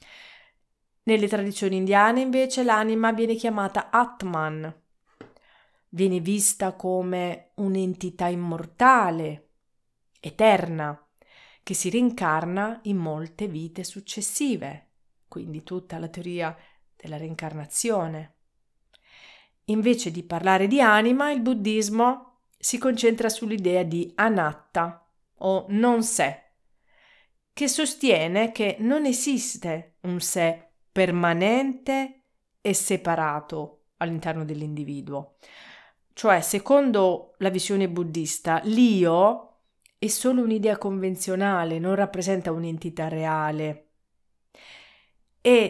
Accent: native